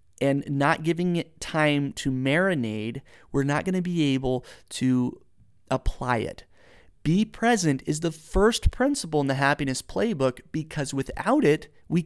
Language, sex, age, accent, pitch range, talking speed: English, male, 30-49, American, 130-170 Hz, 150 wpm